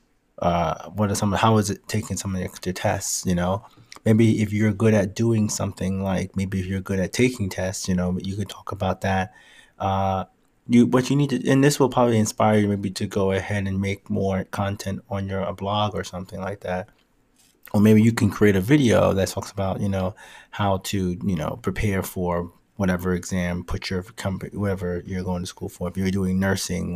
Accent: American